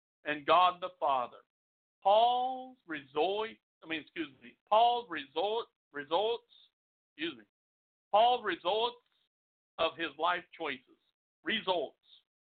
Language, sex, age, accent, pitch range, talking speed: English, male, 60-79, American, 155-225 Hz, 100 wpm